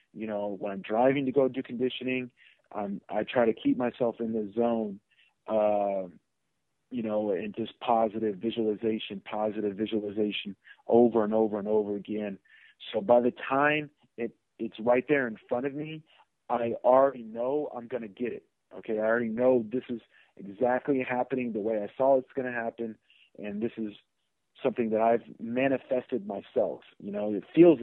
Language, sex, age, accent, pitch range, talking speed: English, male, 40-59, American, 105-125 Hz, 175 wpm